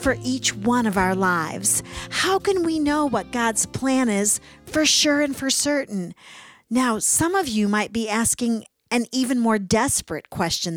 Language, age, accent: English, 50-69, American